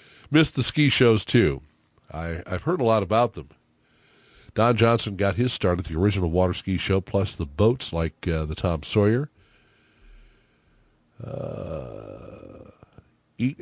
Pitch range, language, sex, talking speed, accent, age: 80-110 Hz, English, male, 140 wpm, American, 50-69